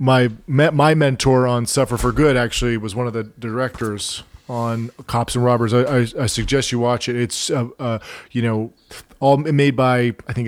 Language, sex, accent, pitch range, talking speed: English, male, American, 115-130 Hz, 195 wpm